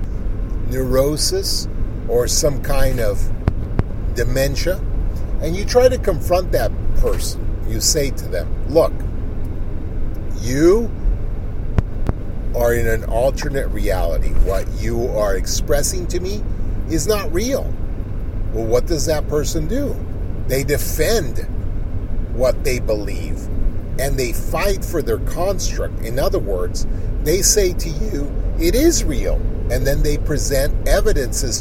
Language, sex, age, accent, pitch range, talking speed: English, male, 50-69, American, 95-125 Hz, 125 wpm